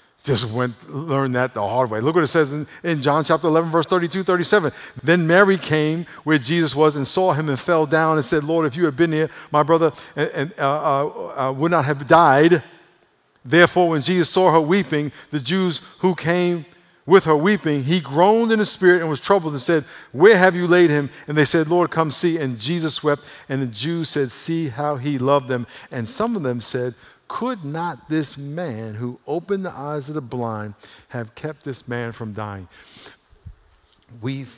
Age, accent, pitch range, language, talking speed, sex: 50-69, American, 115-165 Hz, English, 205 wpm, male